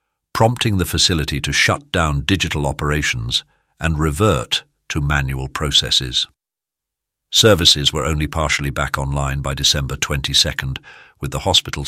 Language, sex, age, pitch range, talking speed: English, male, 50-69, 70-85 Hz, 125 wpm